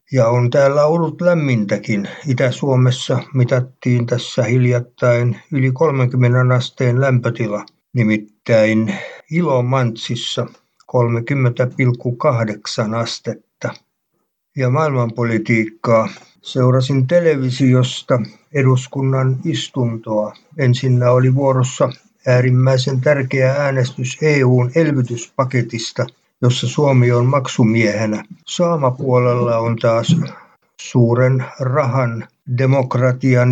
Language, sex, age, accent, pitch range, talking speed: Finnish, male, 60-79, native, 120-135 Hz, 70 wpm